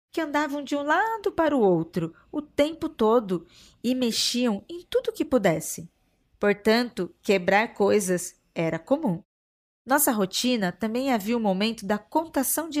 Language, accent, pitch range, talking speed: Portuguese, Brazilian, 195-275 Hz, 145 wpm